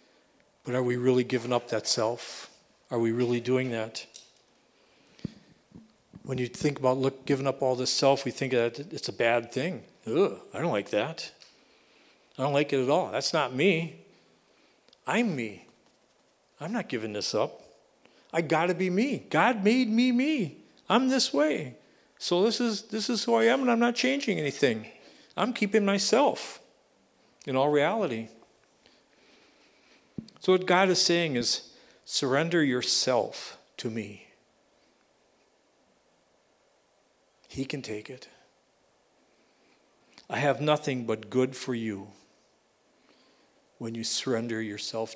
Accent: American